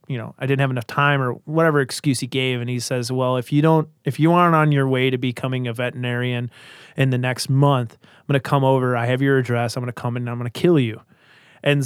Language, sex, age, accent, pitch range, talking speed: English, male, 30-49, American, 125-150 Hz, 275 wpm